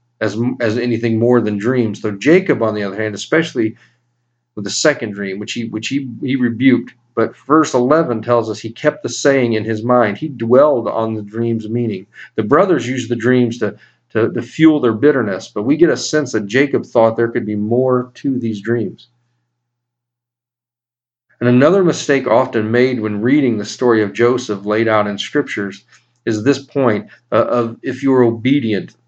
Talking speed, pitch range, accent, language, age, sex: 185 wpm, 110-125 Hz, American, English, 40-59, male